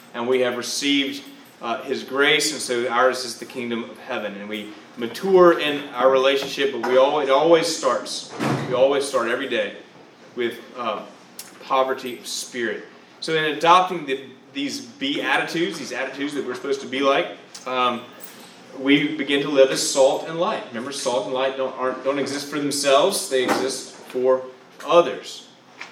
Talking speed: 175 wpm